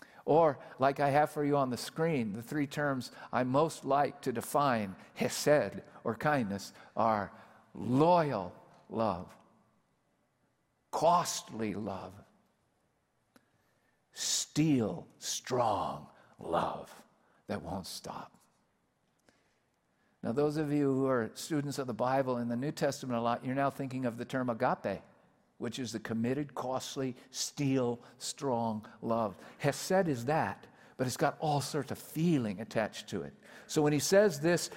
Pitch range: 120-155 Hz